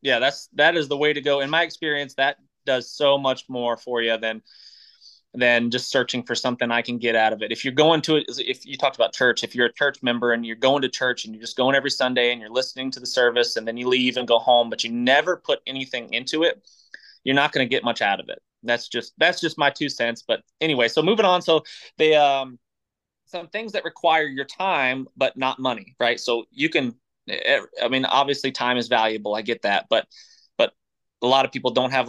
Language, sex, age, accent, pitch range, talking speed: English, male, 20-39, American, 120-145 Hz, 245 wpm